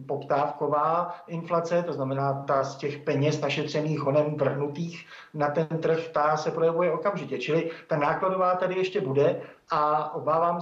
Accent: native